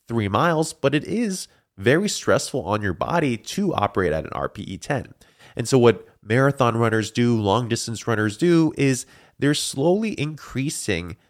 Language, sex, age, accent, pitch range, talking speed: English, male, 20-39, American, 95-135 Hz, 155 wpm